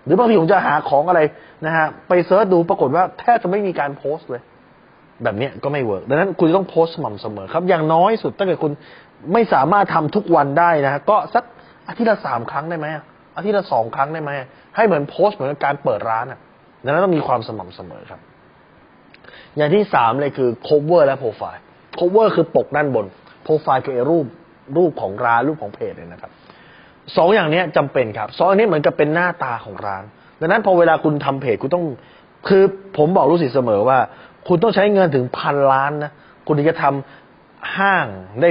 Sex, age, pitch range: male, 20-39, 130-180 Hz